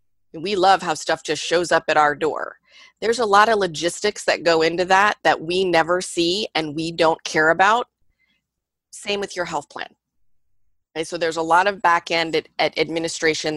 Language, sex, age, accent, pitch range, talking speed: English, female, 30-49, American, 150-180 Hz, 180 wpm